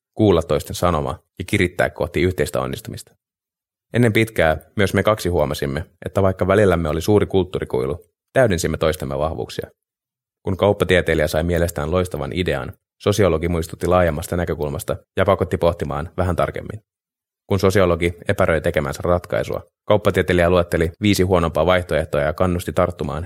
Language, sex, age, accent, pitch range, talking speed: Finnish, male, 20-39, native, 80-100 Hz, 130 wpm